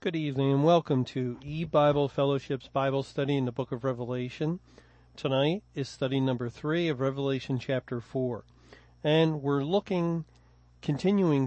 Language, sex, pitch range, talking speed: English, male, 135-155 Hz, 140 wpm